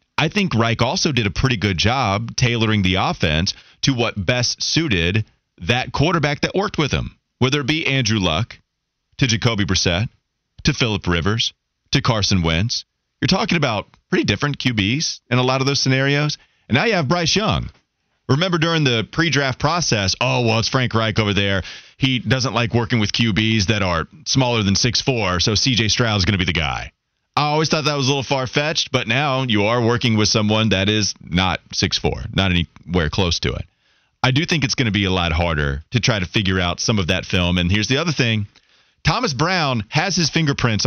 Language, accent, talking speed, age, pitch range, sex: English, American, 205 wpm, 30-49, 105-145 Hz, male